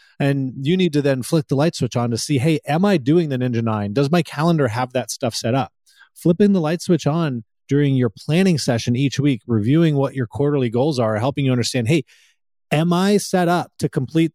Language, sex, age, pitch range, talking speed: English, male, 30-49, 120-160 Hz, 225 wpm